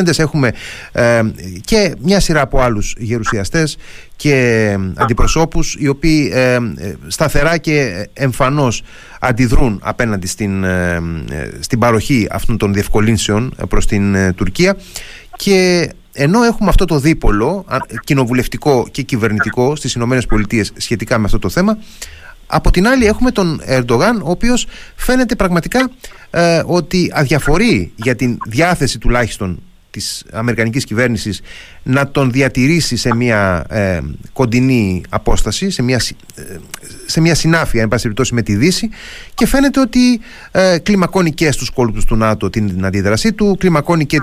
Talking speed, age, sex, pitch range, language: 135 wpm, 30-49, male, 110-155 Hz, Greek